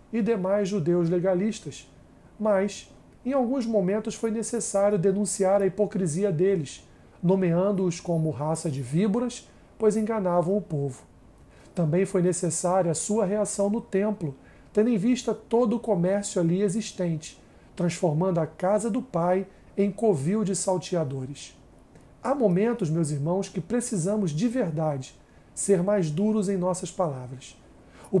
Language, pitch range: Portuguese, 175-210 Hz